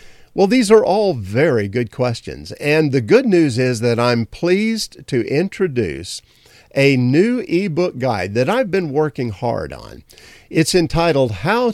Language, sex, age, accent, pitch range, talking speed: English, male, 50-69, American, 110-180 Hz, 155 wpm